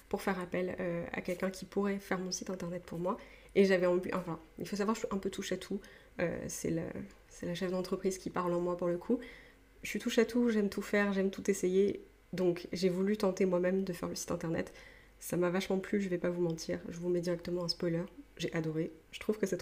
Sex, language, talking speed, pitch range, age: female, French, 265 wpm, 180-205 Hz, 20-39